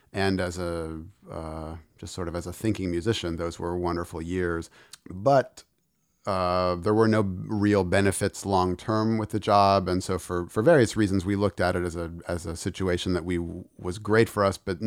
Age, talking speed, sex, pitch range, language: 40-59, 195 wpm, male, 85-95 Hz, English